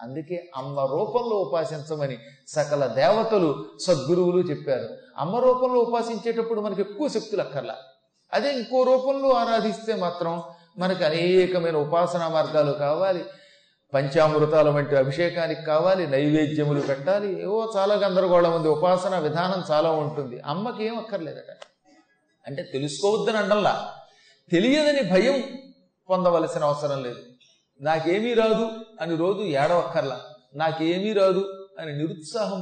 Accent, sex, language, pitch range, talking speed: native, male, Telugu, 145-195 Hz, 105 wpm